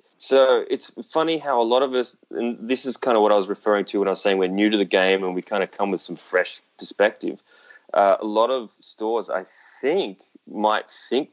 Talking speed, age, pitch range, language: 240 wpm, 20-39, 95-120 Hz, English